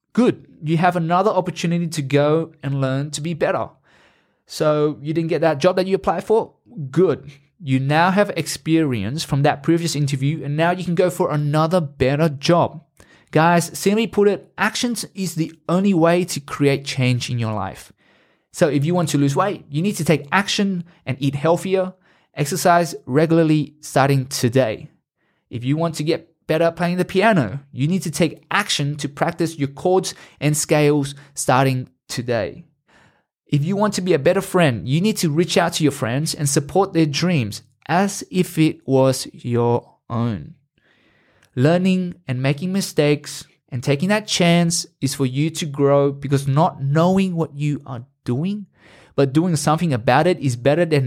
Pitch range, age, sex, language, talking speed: 140-175 Hz, 20-39, male, English, 175 wpm